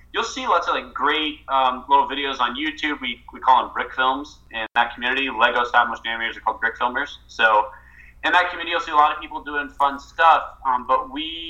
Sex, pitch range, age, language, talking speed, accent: male, 105-130 Hz, 20-39, English, 225 wpm, American